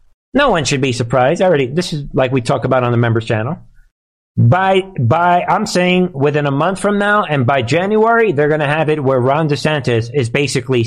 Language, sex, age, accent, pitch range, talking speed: English, male, 50-69, American, 125-175 Hz, 215 wpm